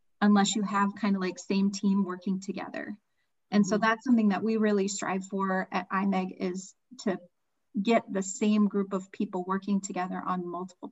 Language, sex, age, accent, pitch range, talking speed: English, female, 30-49, American, 185-215 Hz, 180 wpm